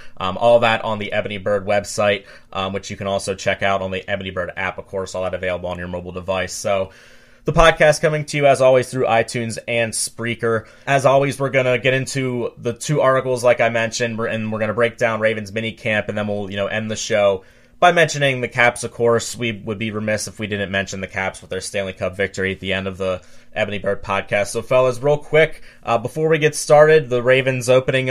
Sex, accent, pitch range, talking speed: male, American, 105-125 Hz, 235 wpm